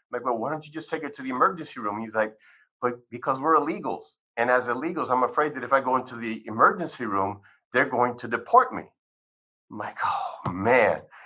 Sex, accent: male, American